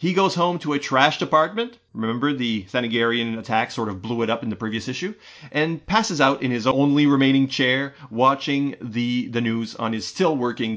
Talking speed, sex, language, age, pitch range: 195 wpm, male, English, 30-49, 115-150 Hz